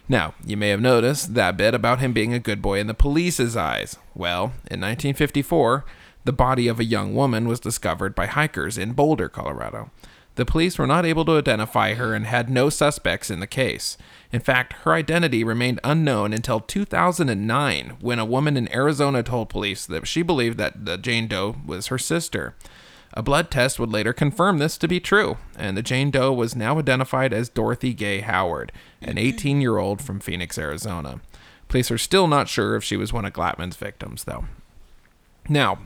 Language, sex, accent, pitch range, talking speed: English, male, American, 105-140 Hz, 190 wpm